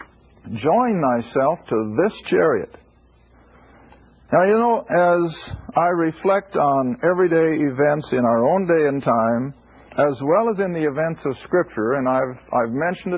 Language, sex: English, male